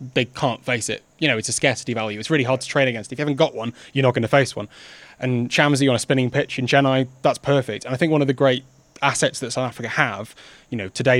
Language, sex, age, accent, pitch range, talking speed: English, male, 20-39, British, 115-140 Hz, 280 wpm